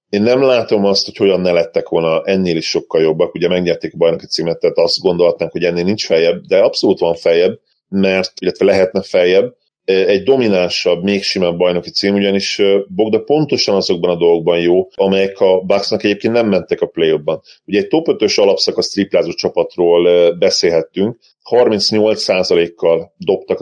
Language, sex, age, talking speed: Hungarian, male, 30-49, 165 wpm